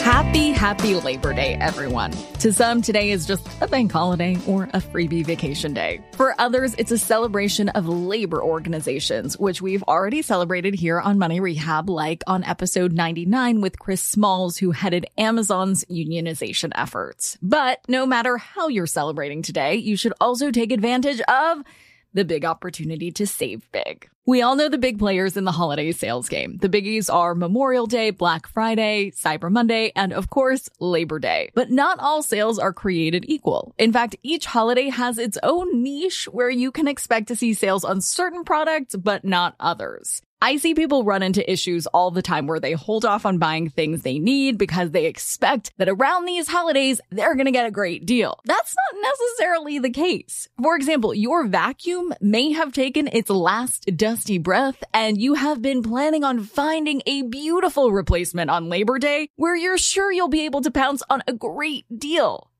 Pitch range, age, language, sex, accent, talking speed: 185-275 Hz, 20-39, English, female, American, 185 wpm